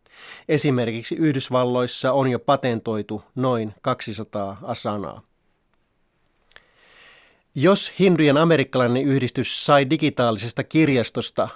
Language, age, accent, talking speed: Finnish, 30-49, native, 80 wpm